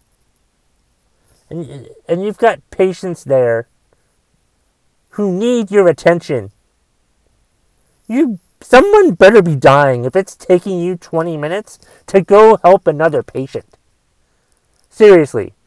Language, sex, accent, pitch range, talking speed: English, male, American, 155-210 Hz, 105 wpm